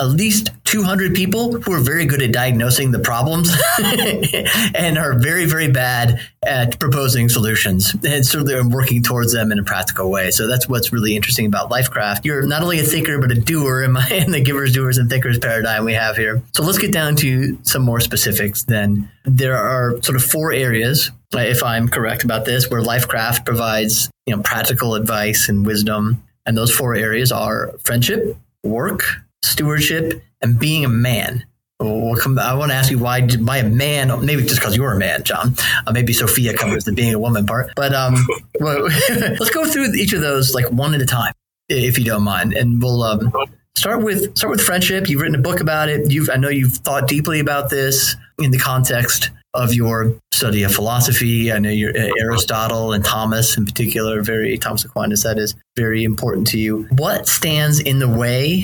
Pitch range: 115-140 Hz